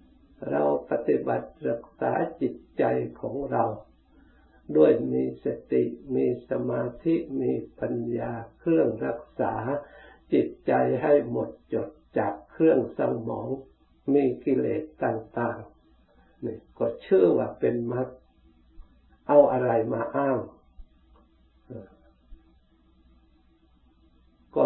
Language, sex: Thai, male